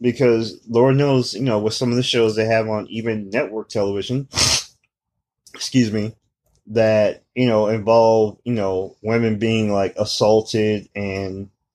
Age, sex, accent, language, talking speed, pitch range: 20-39, male, American, English, 150 wpm, 105-120 Hz